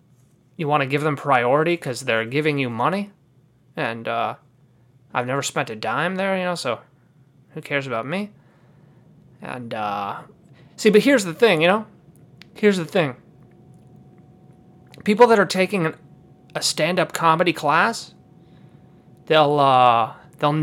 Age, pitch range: 30-49, 150-200 Hz